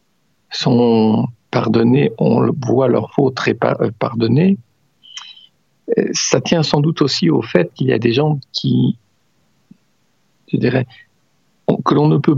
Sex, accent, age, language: male, French, 50-69, French